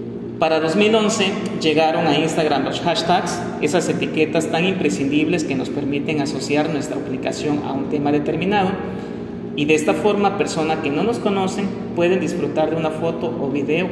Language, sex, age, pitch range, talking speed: Spanish, male, 40-59, 150-195 Hz, 160 wpm